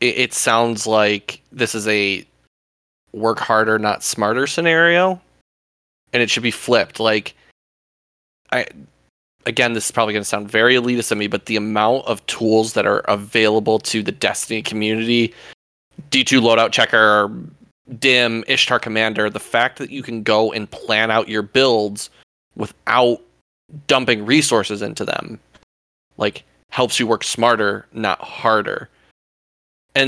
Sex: male